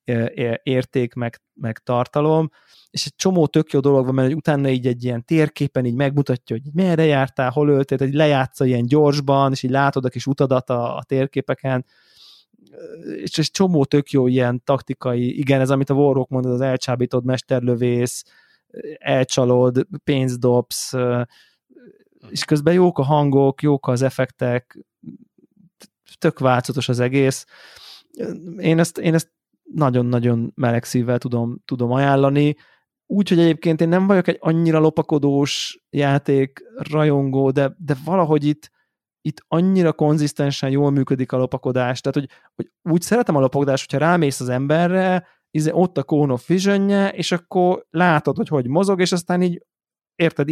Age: 20-39